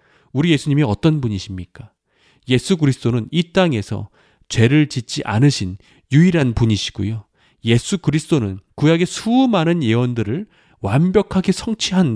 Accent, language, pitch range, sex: native, Korean, 105-160 Hz, male